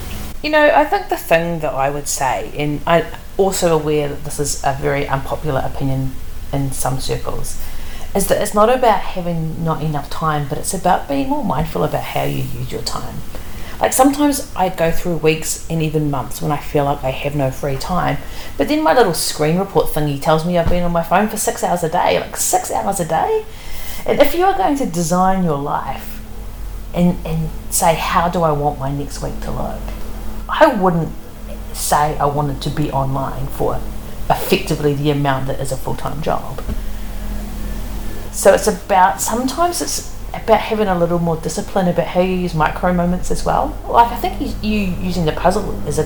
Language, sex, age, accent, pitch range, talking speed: English, female, 40-59, Australian, 140-185 Hz, 200 wpm